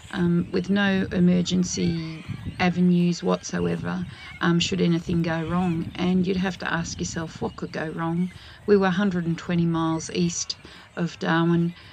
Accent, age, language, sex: Australian, 40-59, English, female